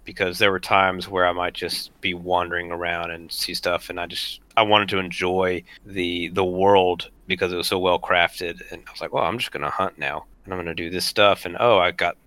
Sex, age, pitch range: male, 30-49, 85-95 Hz